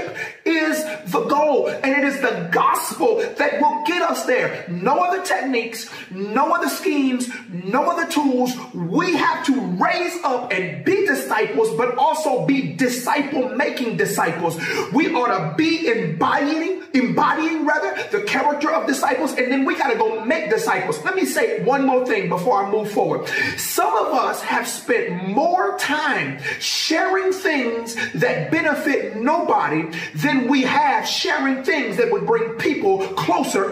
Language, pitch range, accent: English, 245-345 Hz, American